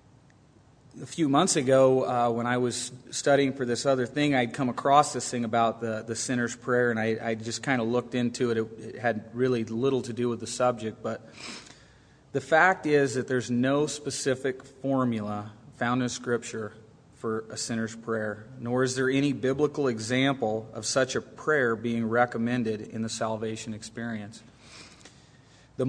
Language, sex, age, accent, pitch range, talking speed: English, male, 30-49, American, 115-135 Hz, 175 wpm